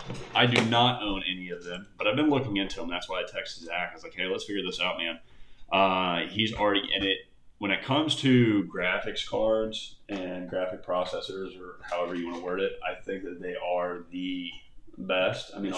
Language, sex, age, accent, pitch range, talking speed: English, male, 30-49, American, 90-115 Hz, 215 wpm